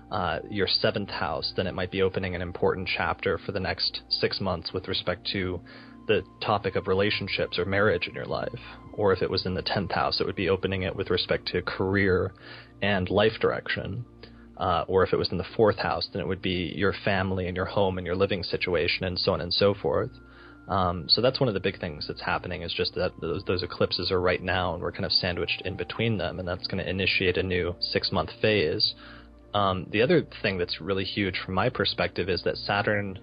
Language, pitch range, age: English, 90-105 Hz, 20-39